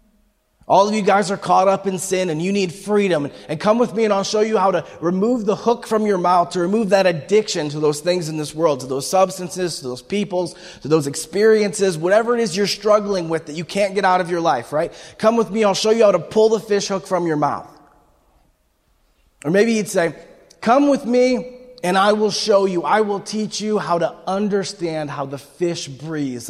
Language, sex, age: English, male, 30-49